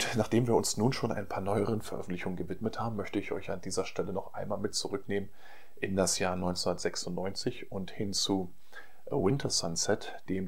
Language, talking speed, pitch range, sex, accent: German, 180 wpm, 95-110 Hz, male, German